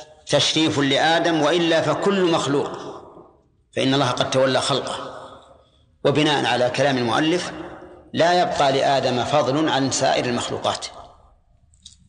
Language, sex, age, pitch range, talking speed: Arabic, male, 40-59, 130-155 Hz, 105 wpm